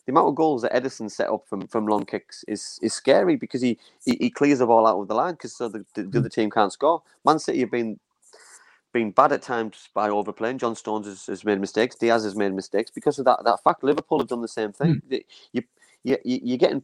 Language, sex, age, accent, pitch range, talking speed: English, male, 30-49, British, 110-140 Hz, 245 wpm